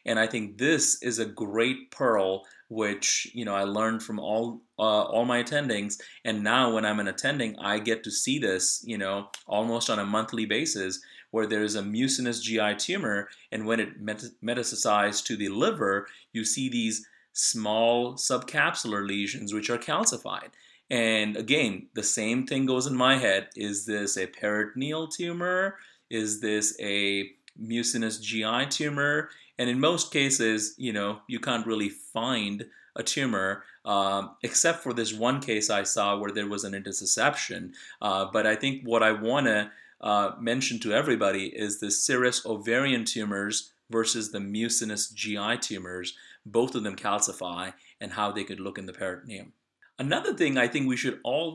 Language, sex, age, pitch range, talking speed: English, male, 30-49, 105-125 Hz, 170 wpm